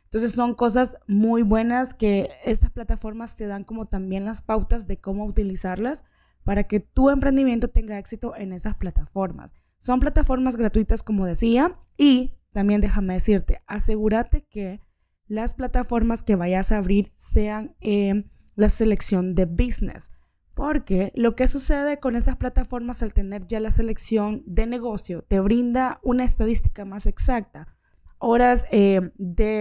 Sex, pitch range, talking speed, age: female, 200-240 Hz, 145 wpm, 20-39